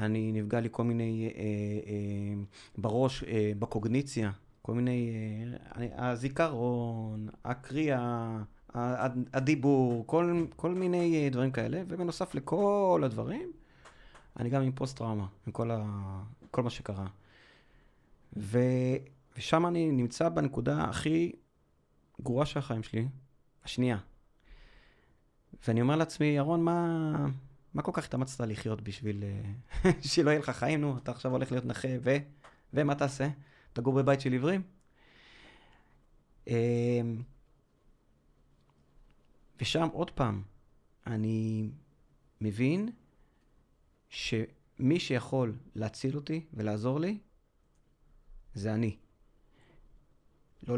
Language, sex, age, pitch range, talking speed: Hebrew, male, 30-49, 110-140 Hz, 100 wpm